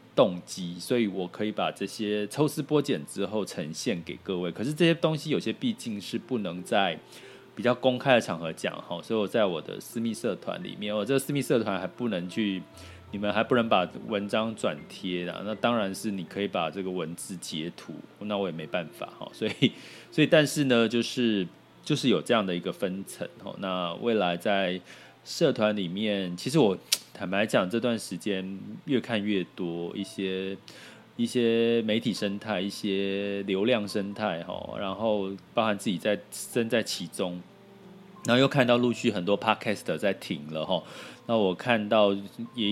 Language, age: Chinese, 20-39